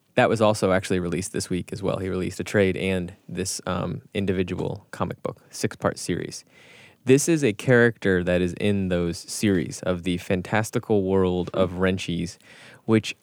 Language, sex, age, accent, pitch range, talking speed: English, male, 10-29, American, 95-115 Hz, 170 wpm